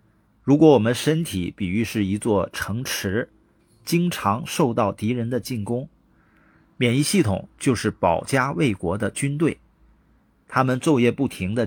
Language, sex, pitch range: Chinese, male, 100-140 Hz